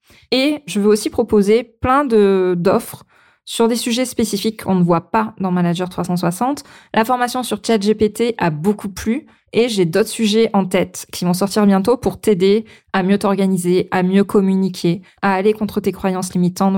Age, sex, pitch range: 20-39, female, 185-220 Hz